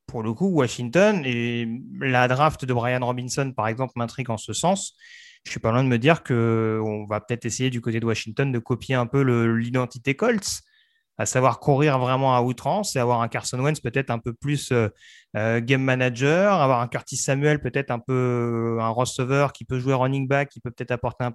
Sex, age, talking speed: male, 30-49, 220 wpm